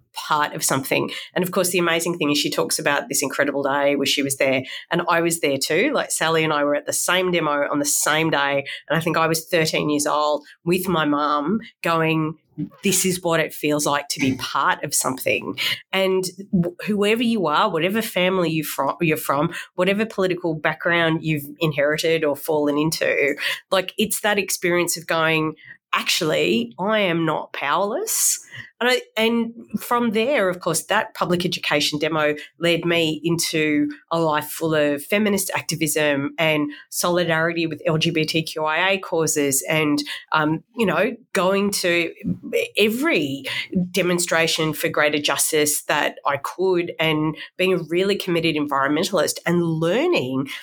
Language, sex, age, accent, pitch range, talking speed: English, female, 30-49, Australian, 150-185 Hz, 160 wpm